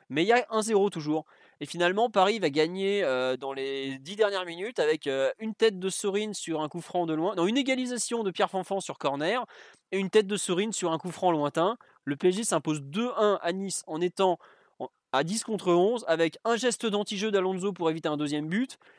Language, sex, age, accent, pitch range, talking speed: French, male, 20-39, French, 150-200 Hz, 210 wpm